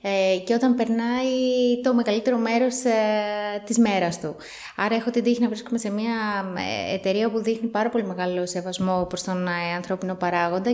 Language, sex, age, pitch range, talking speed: Greek, female, 20-39, 185-235 Hz, 155 wpm